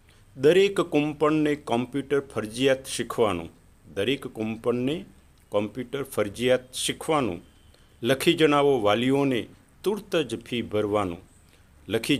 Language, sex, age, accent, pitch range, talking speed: Gujarati, male, 50-69, native, 95-140 Hz, 100 wpm